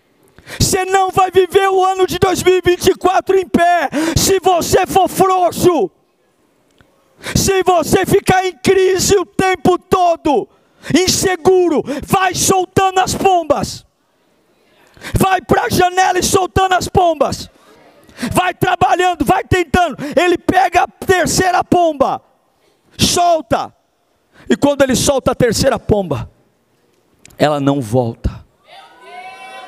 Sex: male